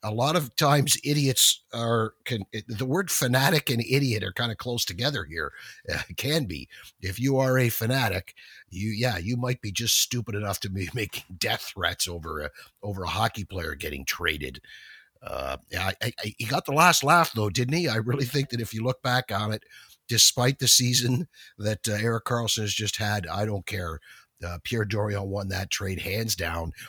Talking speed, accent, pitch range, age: 190 wpm, American, 95-120 Hz, 50-69